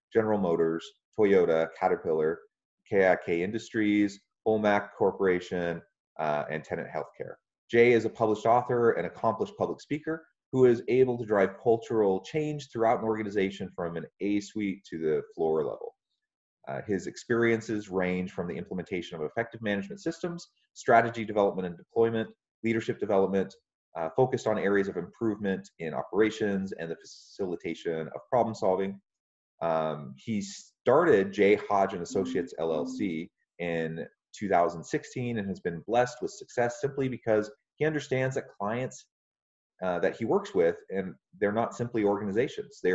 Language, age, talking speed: English, 30-49, 145 wpm